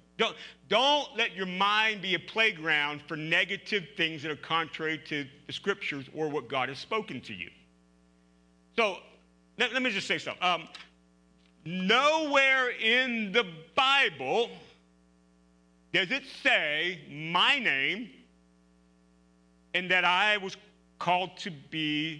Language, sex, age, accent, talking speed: English, male, 50-69, American, 130 wpm